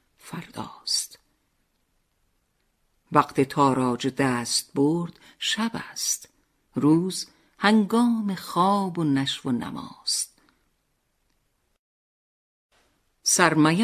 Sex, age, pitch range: female, 50-69, 130-215 Hz